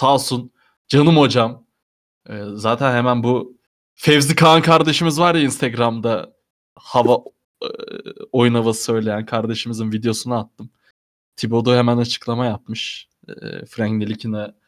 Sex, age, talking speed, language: male, 20-39, 120 wpm, Turkish